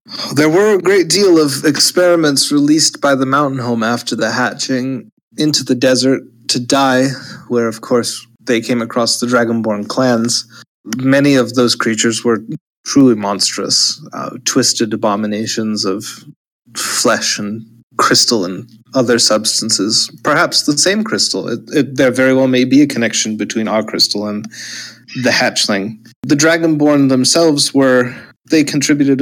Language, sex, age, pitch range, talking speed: English, male, 30-49, 115-135 Hz, 140 wpm